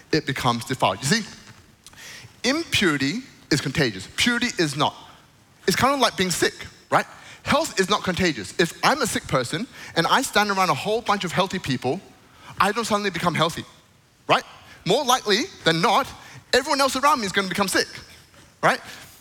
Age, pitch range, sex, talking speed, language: 20-39, 125-195 Hz, male, 180 wpm, English